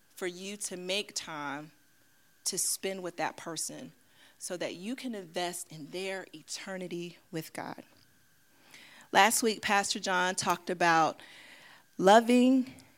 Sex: female